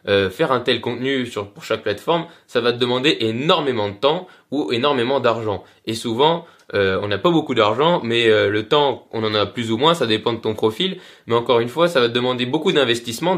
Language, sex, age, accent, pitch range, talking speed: French, male, 20-39, French, 120-165 Hz, 235 wpm